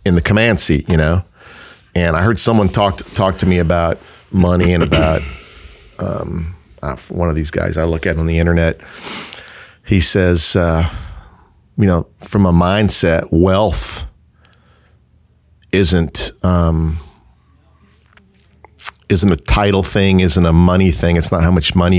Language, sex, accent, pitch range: English, male, American, 80-95 Hz